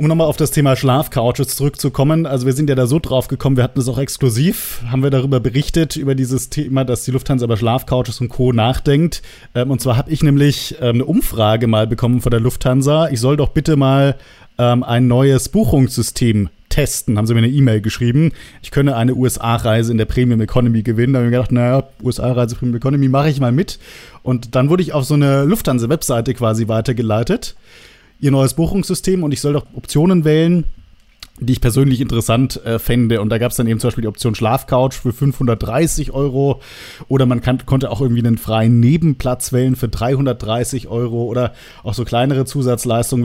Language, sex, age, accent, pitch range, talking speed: German, male, 30-49, German, 120-140 Hz, 195 wpm